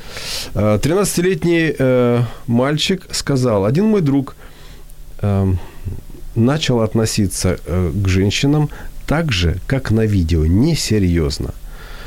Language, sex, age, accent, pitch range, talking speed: Ukrainian, male, 40-59, native, 100-135 Hz, 95 wpm